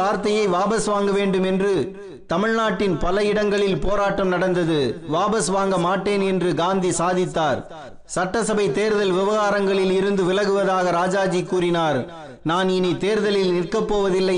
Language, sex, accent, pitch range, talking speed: Tamil, male, native, 180-205 Hz, 95 wpm